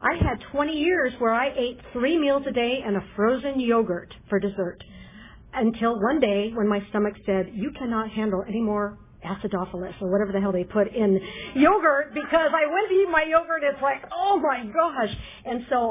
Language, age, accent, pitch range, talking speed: English, 50-69, American, 200-255 Hz, 195 wpm